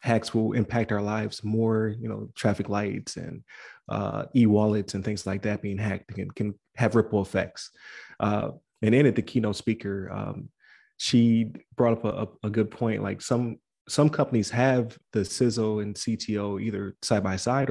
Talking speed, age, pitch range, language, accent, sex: 170 wpm, 20-39, 100-115 Hz, English, American, male